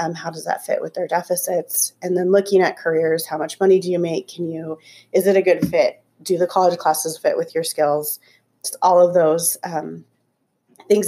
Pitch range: 165-190 Hz